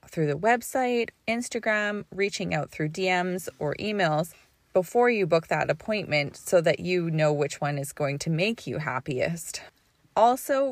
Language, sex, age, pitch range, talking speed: English, female, 30-49, 160-225 Hz, 155 wpm